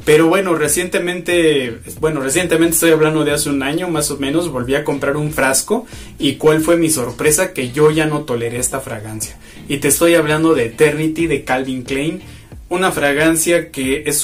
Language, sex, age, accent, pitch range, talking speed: Spanish, male, 30-49, Mexican, 135-165 Hz, 185 wpm